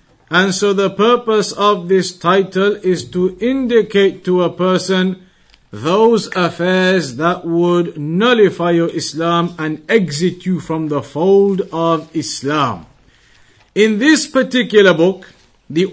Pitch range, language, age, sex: 170-215 Hz, English, 50-69, male